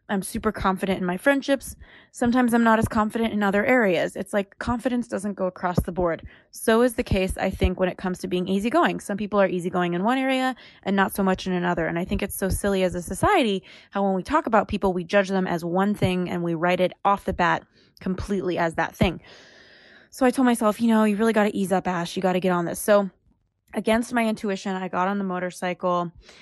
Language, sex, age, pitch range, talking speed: English, female, 20-39, 185-225 Hz, 245 wpm